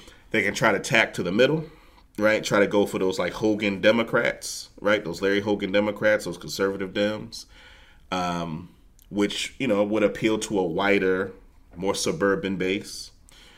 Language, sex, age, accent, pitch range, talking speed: English, male, 30-49, American, 85-105 Hz, 165 wpm